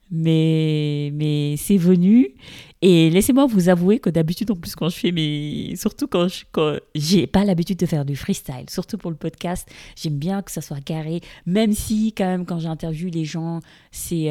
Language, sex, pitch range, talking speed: English, female, 145-175 Hz, 195 wpm